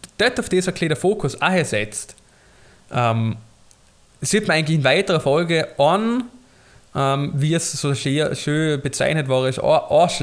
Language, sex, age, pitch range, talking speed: German, male, 20-39, 130-165 Hz, 140 wpm